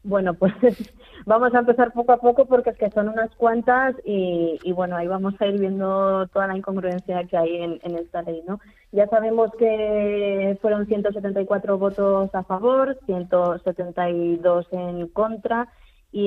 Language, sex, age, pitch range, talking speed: Spanish, female, 20-39, 180-215 Hz, 160 wpm